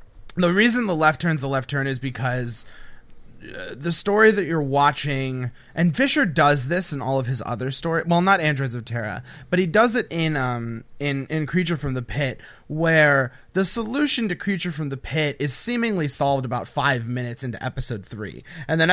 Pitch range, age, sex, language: 125-170 Hz, 30-49, male, English